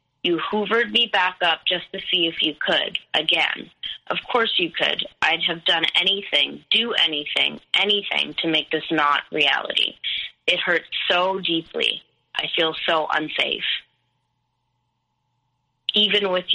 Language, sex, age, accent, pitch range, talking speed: English, female, 20-39, American, 155-185 Hz, 140 wpm